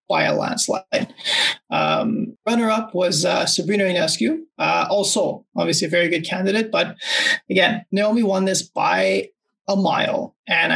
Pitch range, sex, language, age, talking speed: 180-230 Hz, male, English, 30-49, 140 wpm